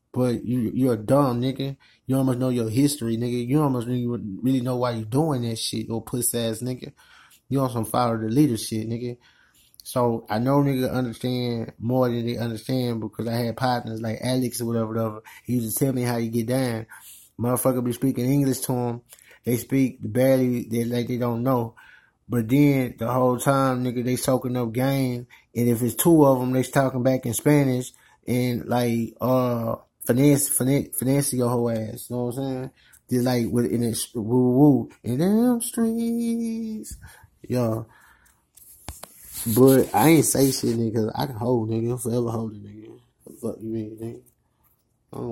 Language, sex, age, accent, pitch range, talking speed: English, male, 20-39, American, 115-130 Hz, 185 wpm